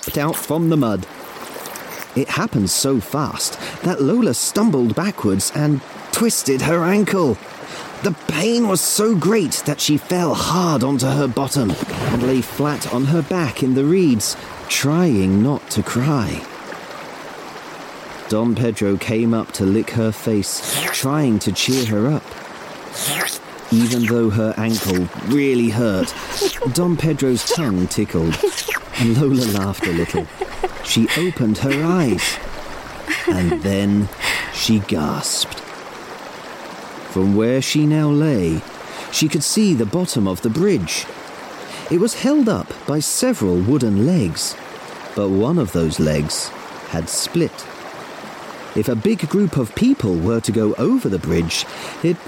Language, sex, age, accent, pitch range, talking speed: English, male, 30-49, British, 105-165 Hz, 135 wpm